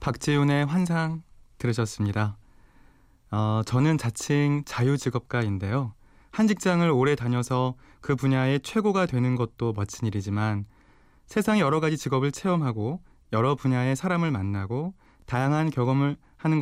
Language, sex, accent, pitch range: Korean, male, native, 115-165 Hz